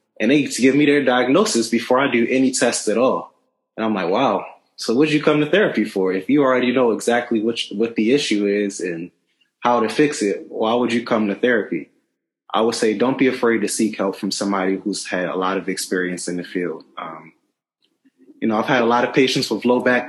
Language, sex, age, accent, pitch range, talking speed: English, male, 20-39, American, 100-140 Hz, 240 wpm